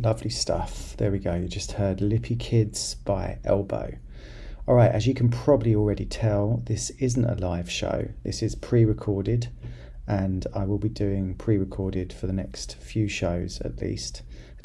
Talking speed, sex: 170 wpm, male